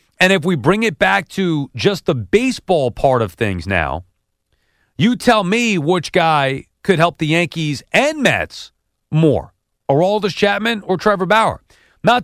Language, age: English, 40-59